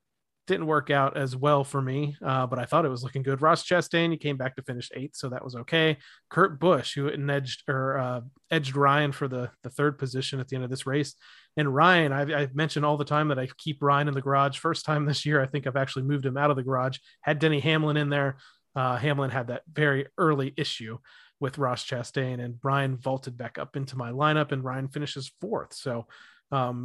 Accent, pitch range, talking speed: American, 130-155 Hz, 230 wpm